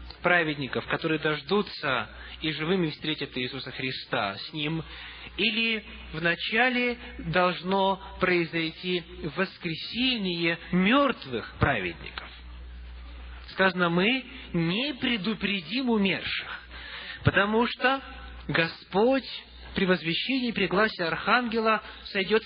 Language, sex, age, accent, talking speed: Russian, male, 20-39, native, 80 wpm